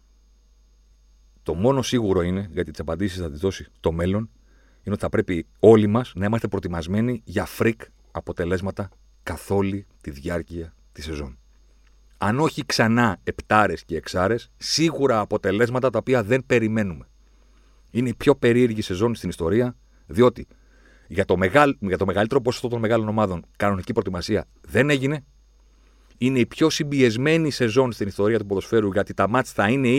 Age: 40-59